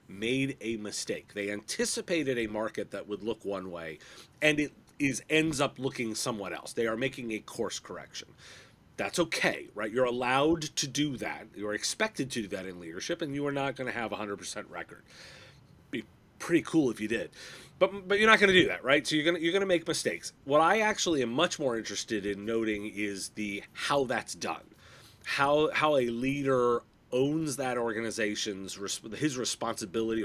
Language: English